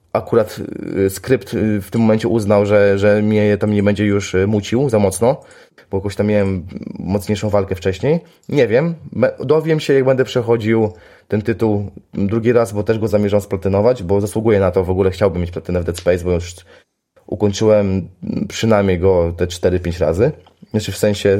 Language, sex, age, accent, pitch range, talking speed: Polish, male, 20-39, native, 95-115 Hz, 175 wpm